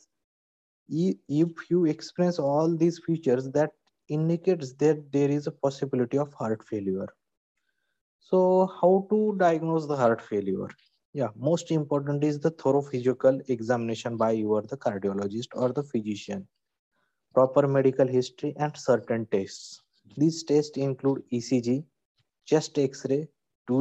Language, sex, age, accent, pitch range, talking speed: English, male, 20-39, Indian, 120-155 Hz, 130 wpm